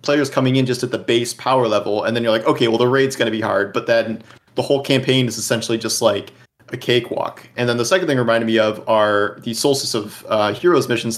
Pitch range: 110-135 Hz